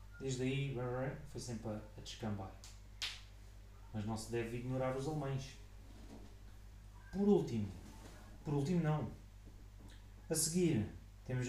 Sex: male